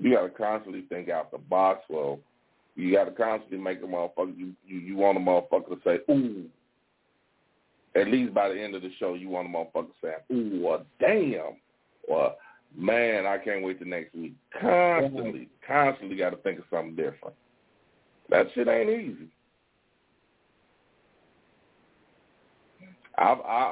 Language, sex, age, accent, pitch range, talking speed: English, male, 40-59, American, 95-155 Hz, 160 wpm